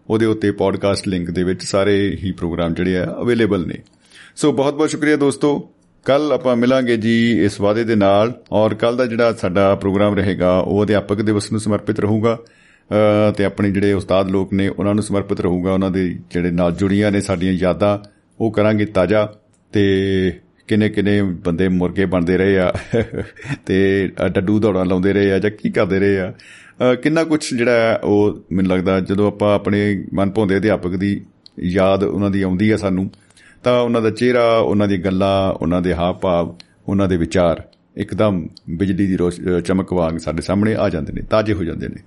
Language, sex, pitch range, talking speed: Punjabi, male, 95-110 Hz, 145 wpm